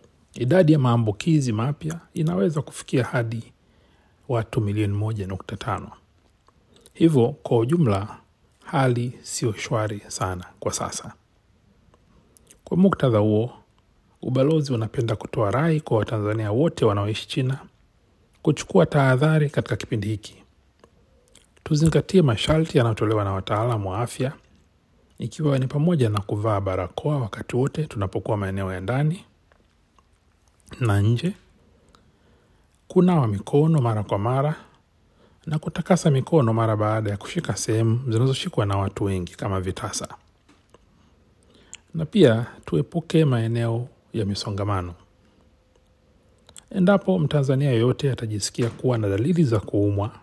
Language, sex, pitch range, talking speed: Swahili, male, 100-150 Hz, 110 wpm